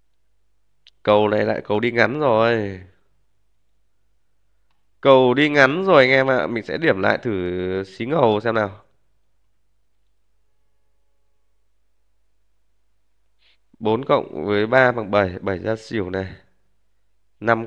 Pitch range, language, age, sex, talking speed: 105-130 Hz, Vietnamese, 20-39, male, 120 wpm